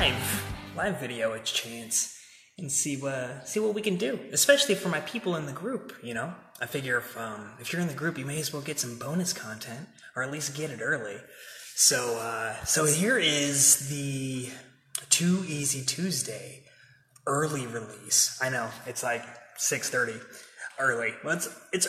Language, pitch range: English, 120-155 Hz